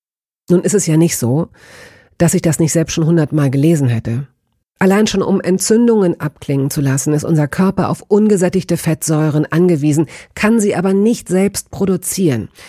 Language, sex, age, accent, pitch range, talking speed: German, female, 40-59, German, 150-200 Hz, 165 wpm